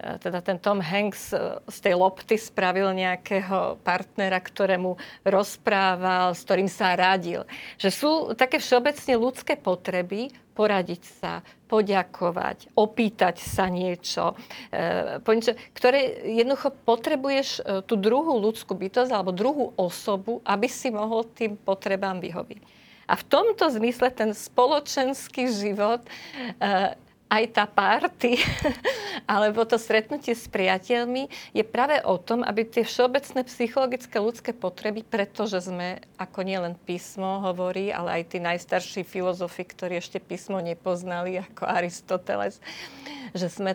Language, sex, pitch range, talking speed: Slovak, female, 185-240 Hz, 120 wpm